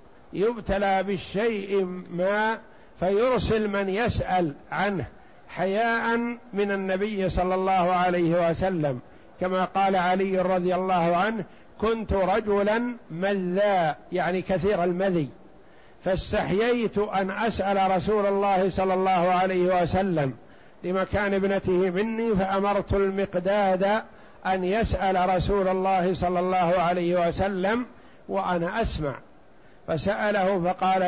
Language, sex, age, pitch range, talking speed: Arabic, male, 60-79, 185-215 Hz, 100 wpm